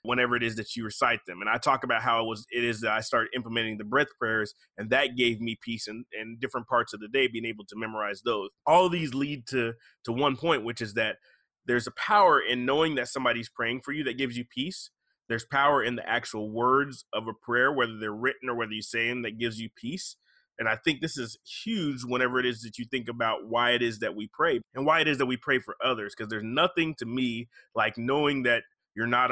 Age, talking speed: 30-49, 255 wpm